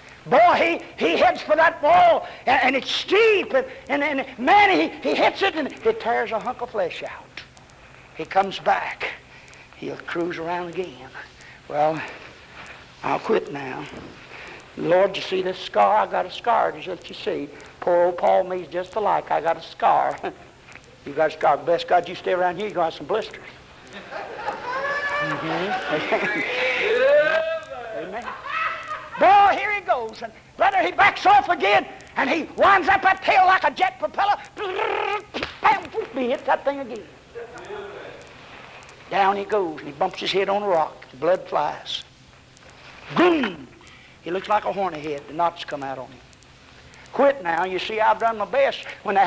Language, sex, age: English, male, 60-79